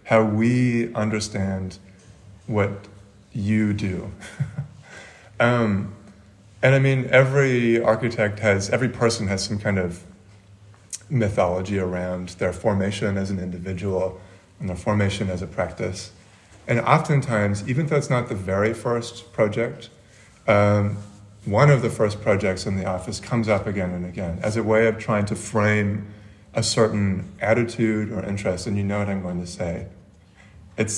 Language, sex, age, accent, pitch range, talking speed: English, male, 30-49, American, 95-115 Hz, 150 wpm